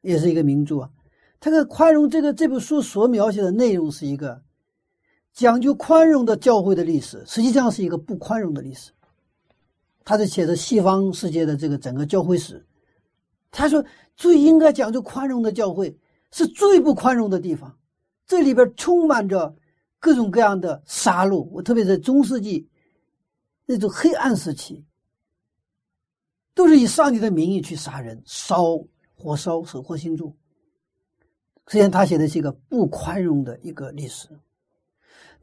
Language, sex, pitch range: Chinese, male, 160-265 Hz